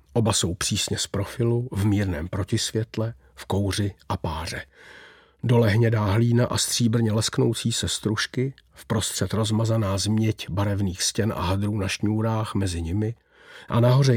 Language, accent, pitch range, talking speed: Czech, native, 105-125 Hz, 145 wpm